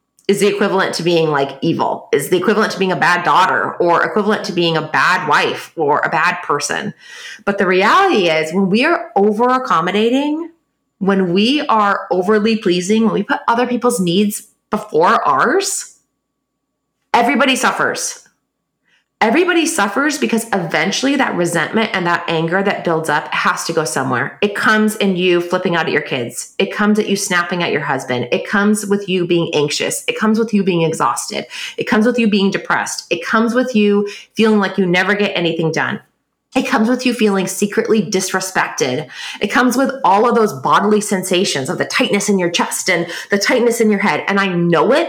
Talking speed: 190 wpm